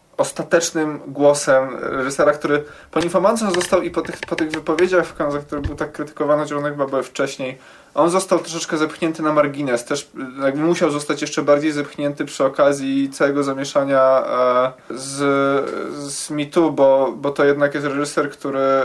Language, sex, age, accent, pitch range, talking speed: Polish, male, 20-39, native, 130-155 Hz, 160 wpm